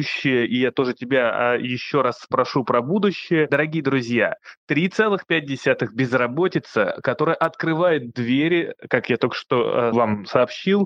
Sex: male